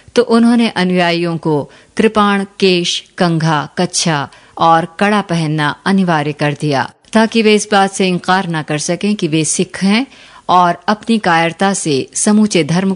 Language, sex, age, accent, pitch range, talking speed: Hindi, female, 50-69, native, 160-205 Hz, 155 wpm